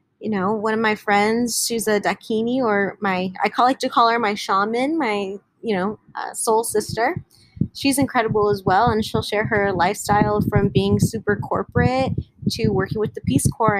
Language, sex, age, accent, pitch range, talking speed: English, female, 20-39, American, 190-235 Hz, 185 wpm